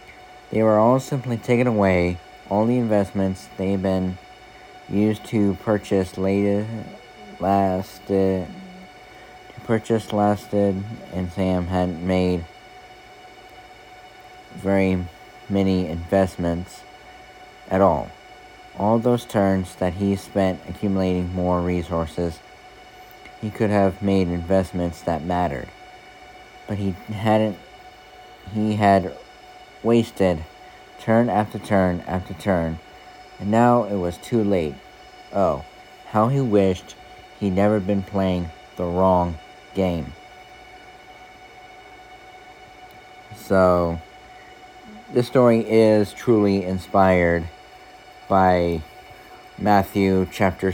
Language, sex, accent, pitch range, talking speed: English, male, American, 90-110 Hz, 95 wpm